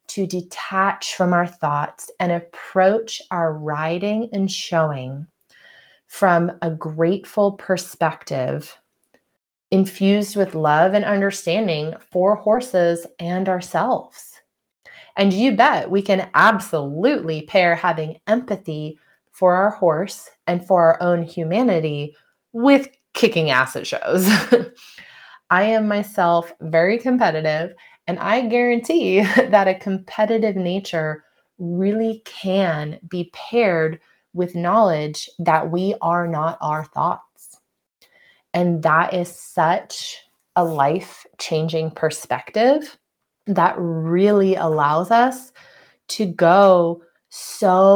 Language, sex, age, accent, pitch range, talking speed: English, female, 30-49, American, 165-205 Hz, 105 wpm